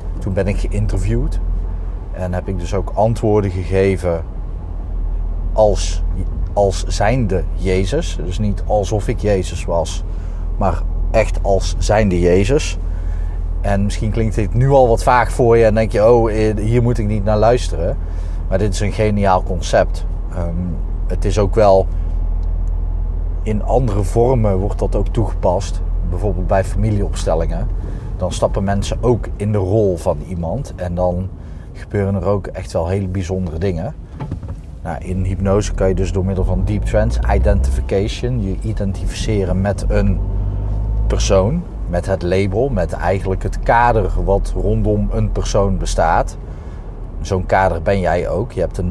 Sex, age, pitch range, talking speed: male, 30-49, 85-105 Hz, 150 wpm